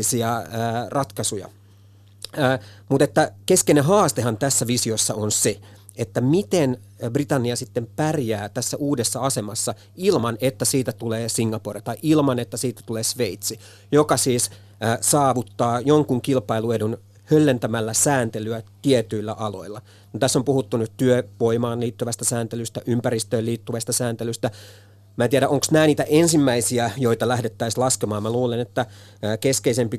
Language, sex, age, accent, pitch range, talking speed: Finnish, male, 30-49, native, 110-130 Hz, 125 wpm